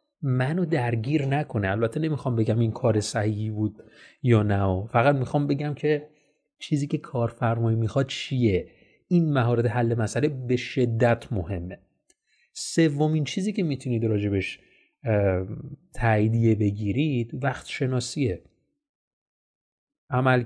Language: Persian